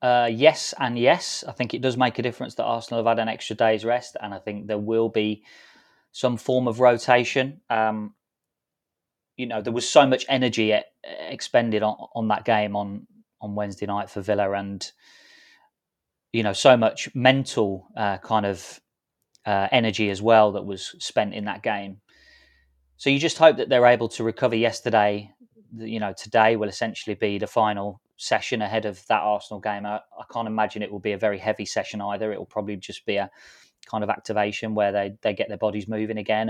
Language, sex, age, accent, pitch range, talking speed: English, male, 20-39, British, 105-125 Hz, 195 wpm